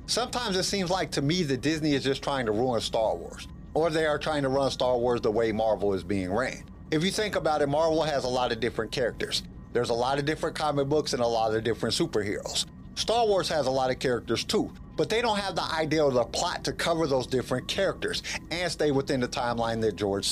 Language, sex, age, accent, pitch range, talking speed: English, male, 50-69, American, 125-165 Hz, 245 wpm